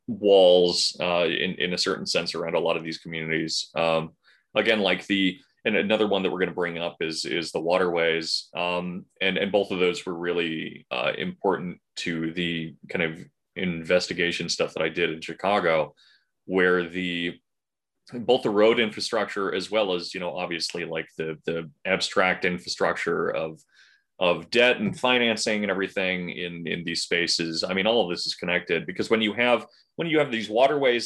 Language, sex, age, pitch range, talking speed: English, male, 30-49, 85-105 Hz, 185 wpm